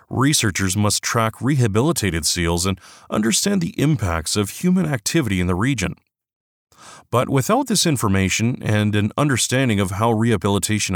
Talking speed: 135 wpm